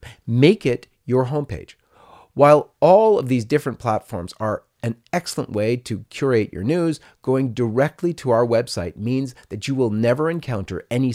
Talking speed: 160 wpm